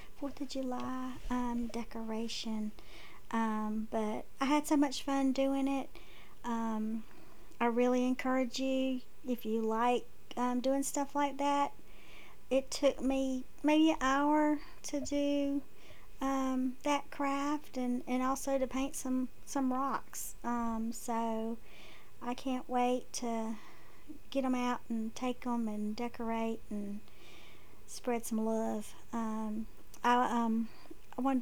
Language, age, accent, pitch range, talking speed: English, 40-59, American, 230-270 Hz, 130 wpm